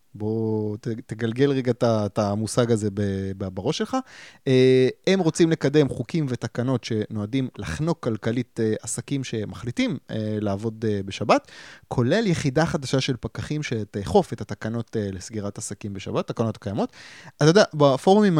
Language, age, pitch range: Hebrew, 20-39, 110-140 Hz